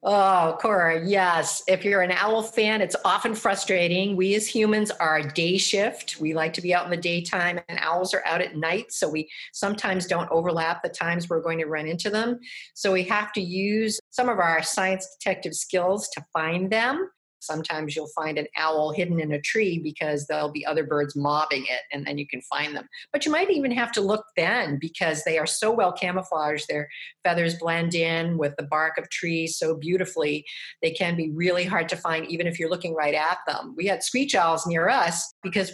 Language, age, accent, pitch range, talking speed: English, 50-69, American, 160-205 Hz, 215 wpm